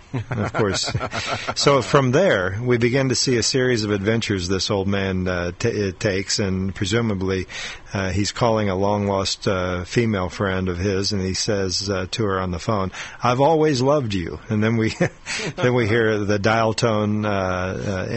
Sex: male